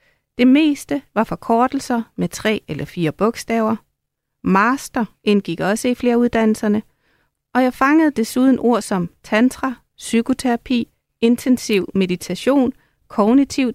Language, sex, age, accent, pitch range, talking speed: Danish, female, 30-49, native, 185-240 Hz, 115 wpm